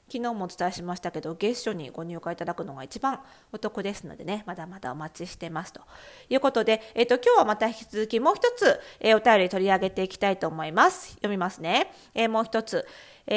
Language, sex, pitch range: Japanese, female, 205-345 Hz